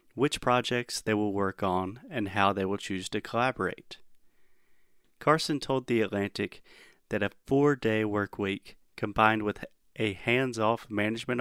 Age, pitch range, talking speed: 30-49, 100-120 Hz, 140 wpm